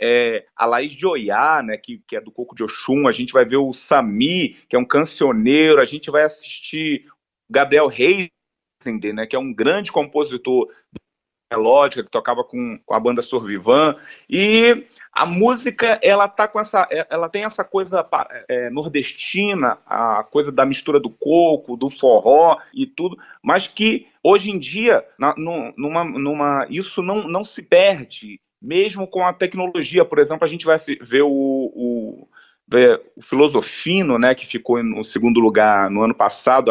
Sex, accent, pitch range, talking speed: male, Brazilian, 130-205 Hz, 165 wpm